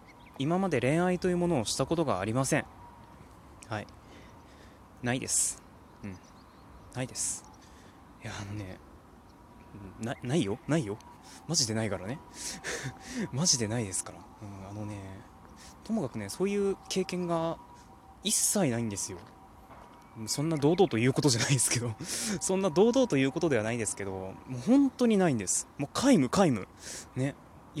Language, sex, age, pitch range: Japanese, male, 20-39, 100-165 Hz